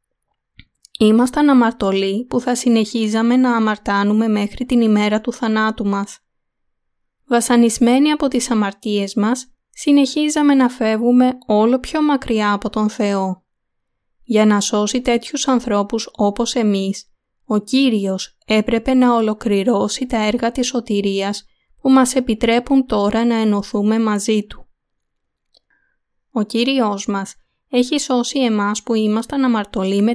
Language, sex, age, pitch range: Greek, female, 20-39, 205-250 Hz